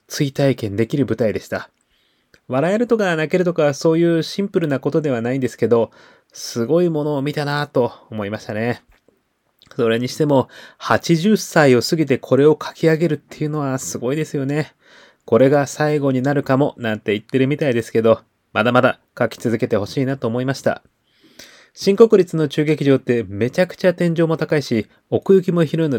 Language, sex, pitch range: Japanese, male, 120-160 Hz